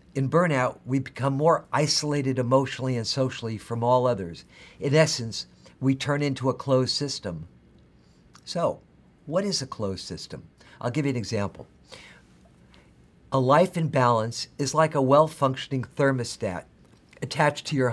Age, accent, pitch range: 50-69, American, 105-145 Hz